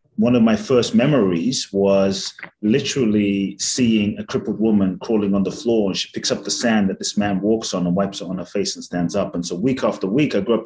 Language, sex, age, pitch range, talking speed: English, male, 30-49, 95-130 Hz, 240 wpm